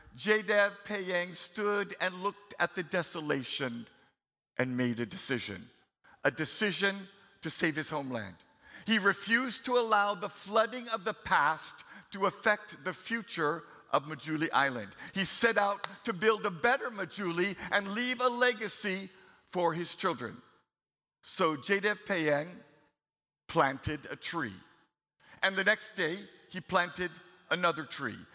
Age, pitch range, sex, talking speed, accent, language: 50-69, 175-215 Hz, male, 135 wpm, American, English